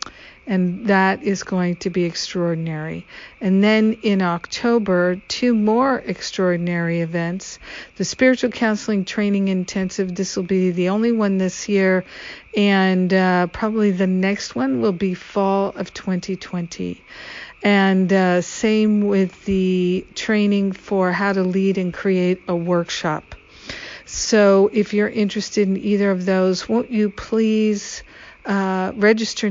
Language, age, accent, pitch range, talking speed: English, 50-69, American, 185-210 Hz, 135 wpm